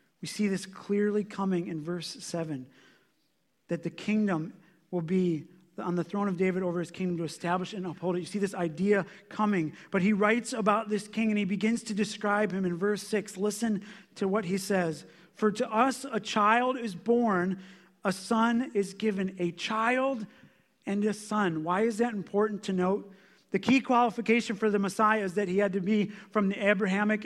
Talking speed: 195 wpm